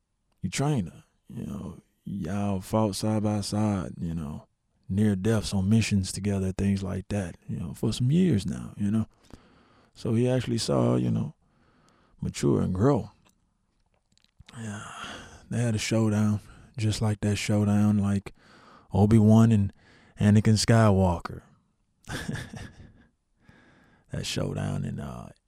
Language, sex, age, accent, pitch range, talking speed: English, male, 20-39, American, 90-110 Hz, 130 wpm